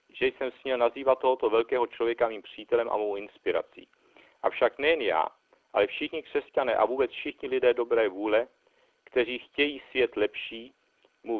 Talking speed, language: 155 wpm, Czech